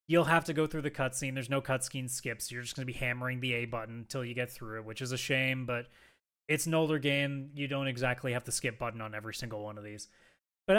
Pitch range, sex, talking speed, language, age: 125-165 Hz, male, 265 wpm, English, 20-39